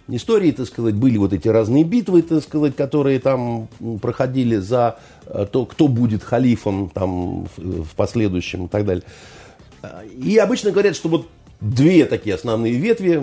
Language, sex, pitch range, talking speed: Russian, male, 90-130 Hz, 150 wpm